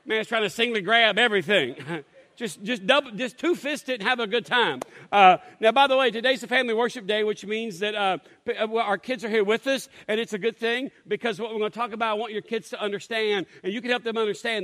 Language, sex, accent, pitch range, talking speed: English, male, American, 200-235 Hz, 250 wpm